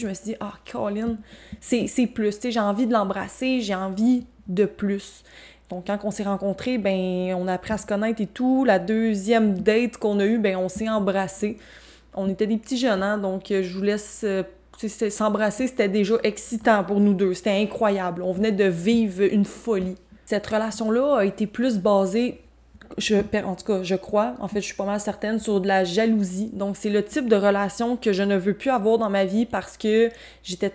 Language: French